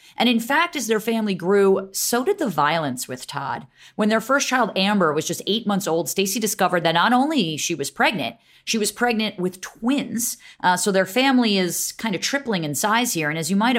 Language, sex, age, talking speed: English, female, 30-49, 220 wpm